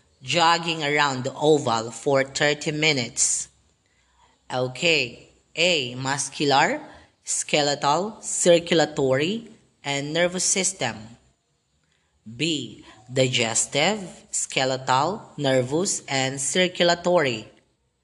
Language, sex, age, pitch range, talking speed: Filipino, female, 20-39, 125-165 Hz, 70 wpm